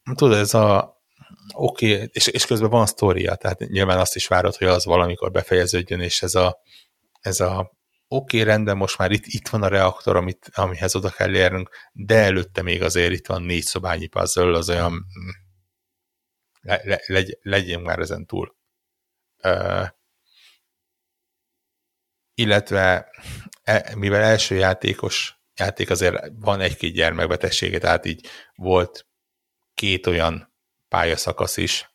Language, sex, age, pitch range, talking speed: Hungarian, male, 60-79, 90-110 Hz, 140 wpm